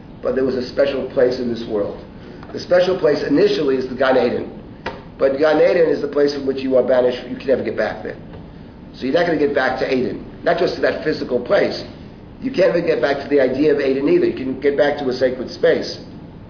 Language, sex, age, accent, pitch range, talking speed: English, male, 40-59, American, 120-140 Hz, 245 wpm